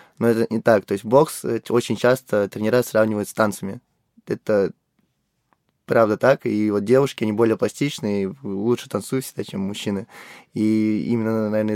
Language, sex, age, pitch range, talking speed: Russian, male, 20-39, 105-120 Hz, 155 wpm